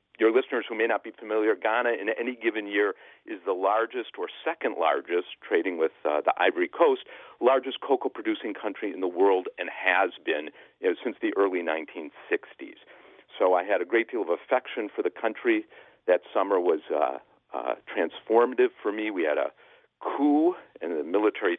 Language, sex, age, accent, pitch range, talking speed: English, male, 40-59, American, 315-445 Hz, 180 wpm